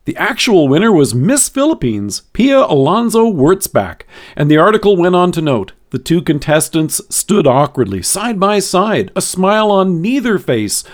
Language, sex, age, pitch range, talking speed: English, male, 50-69, 130-190 Hz, 160 wpm